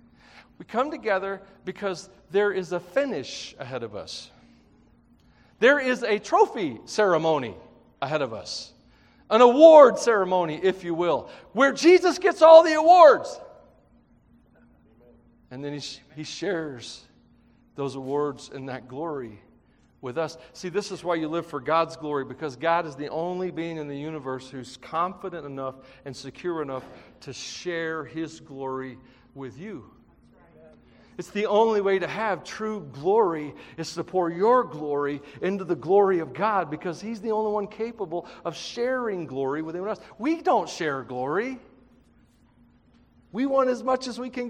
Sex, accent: male, American